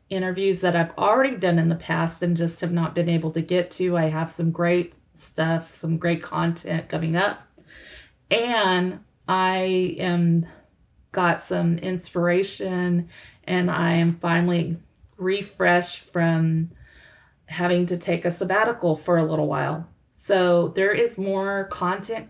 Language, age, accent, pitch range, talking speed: English, 30-49, American, 165-195 Hz, 145 wpm